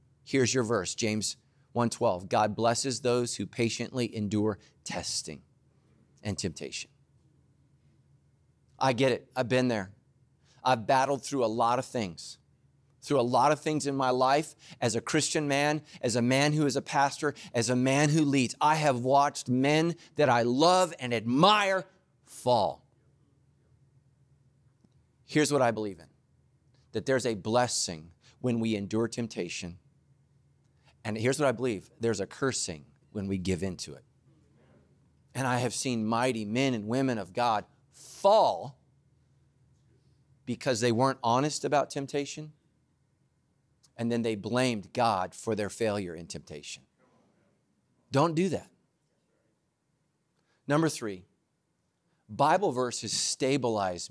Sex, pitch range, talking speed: male, 115-140 Hz, 135 wpm